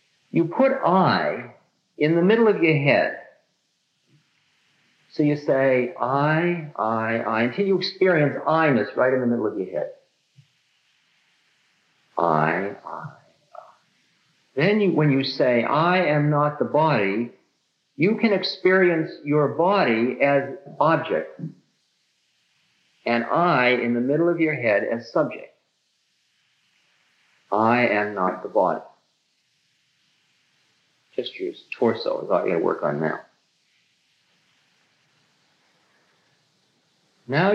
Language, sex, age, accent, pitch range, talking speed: English, male, 50-69, American, 125-170 Hz, 115 wpm